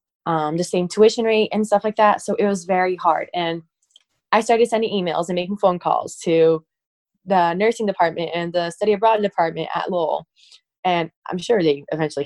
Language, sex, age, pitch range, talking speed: English, female, 20-39, 175-220 Hz, 190 wpm